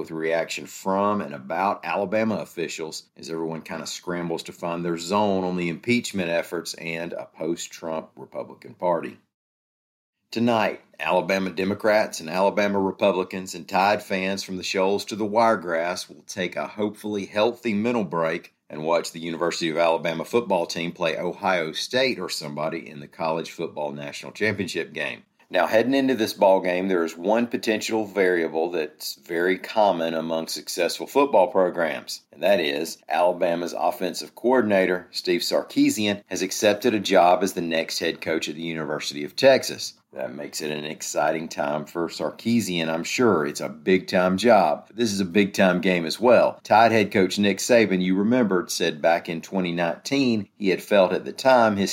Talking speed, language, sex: 170 wpm, English, male